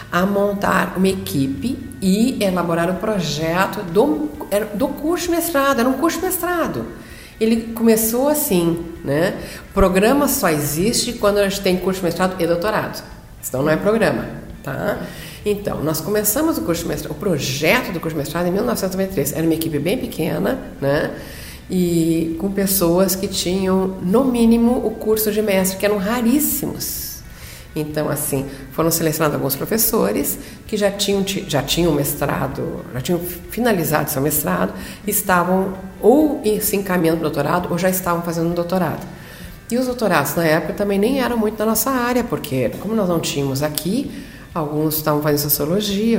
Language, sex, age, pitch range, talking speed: Portuguese, female, 60-79, 165-215 Hz, 165 wpm